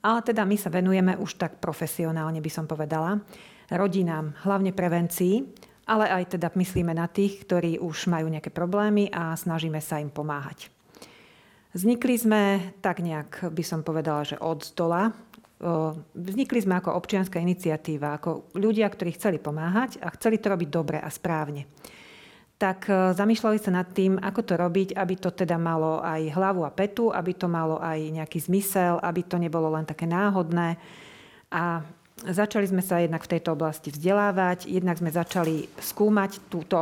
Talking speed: 160 wpm